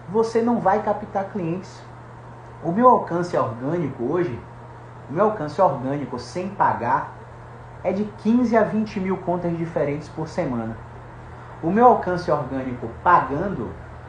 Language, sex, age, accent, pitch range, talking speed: Portuguese, male, 30-49, Brazilian, 125-190 Hz, 130 wpm